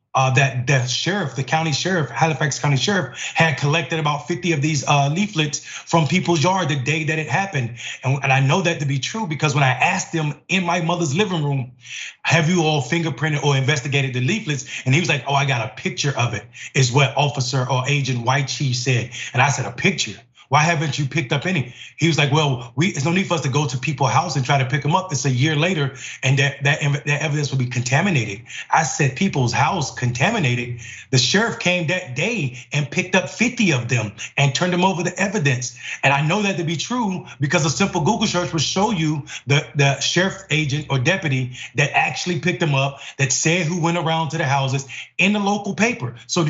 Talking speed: 225 wpm